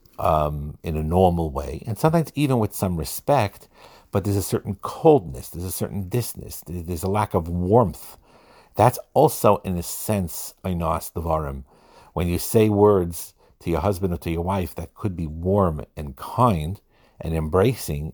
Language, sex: English, male